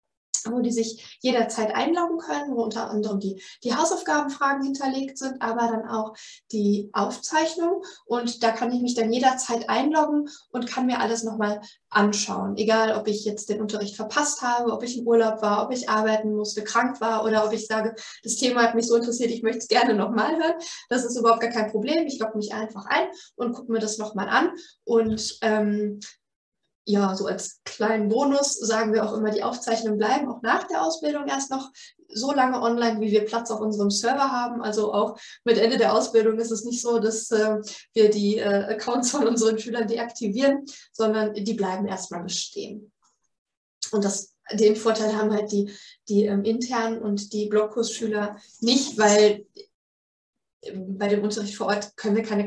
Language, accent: German, German